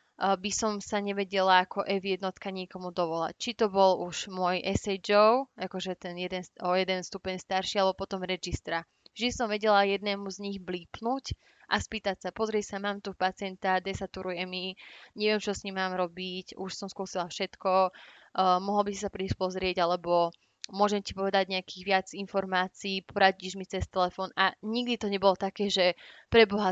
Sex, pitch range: female, 185-200 Hz